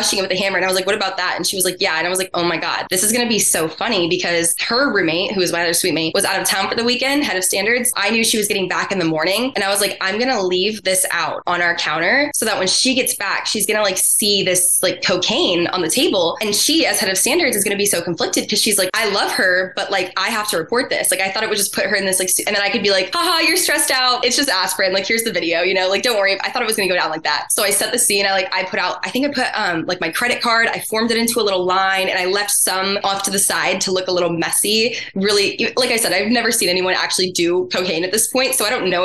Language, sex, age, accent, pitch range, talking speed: English, female, 20-39, American, 185-220 Hz, 320 wpm